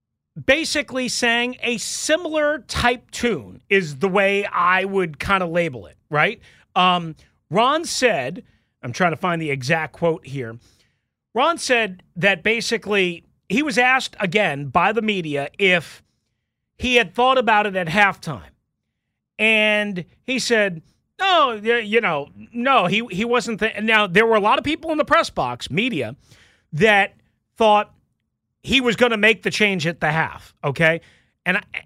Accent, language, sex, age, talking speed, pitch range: American, English, male, 40-59, 155 wpm, 165-240 Hz